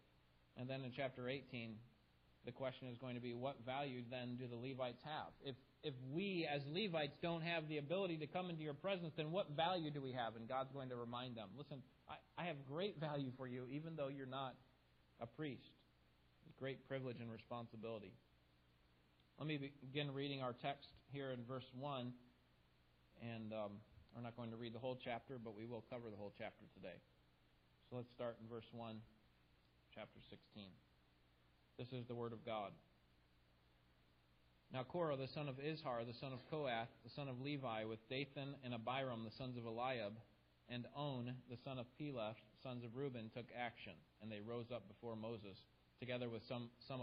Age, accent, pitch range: 40-59, American, 105-140 Hz